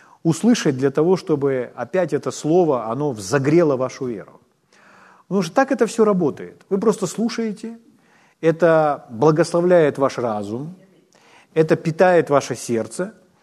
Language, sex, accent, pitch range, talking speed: Ukrainian, male, native, 135-195 Hz, 125 wpm